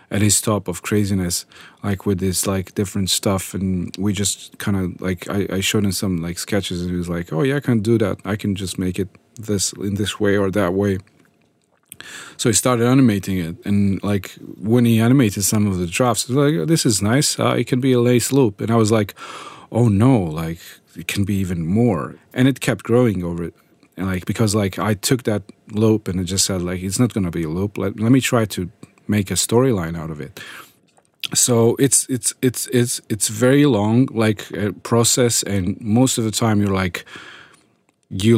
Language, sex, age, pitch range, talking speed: English, male, 30-49, 95-115 Hz, 220 wpm